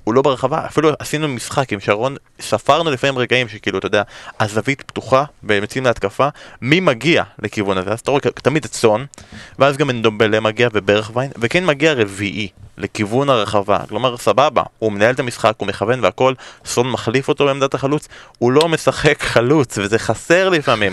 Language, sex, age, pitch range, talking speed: Hebrew, male, 20-39, 110-145 Hz, 170 wpm